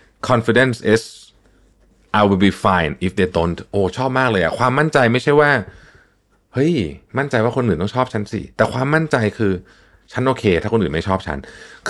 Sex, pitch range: male, 95-130 Hz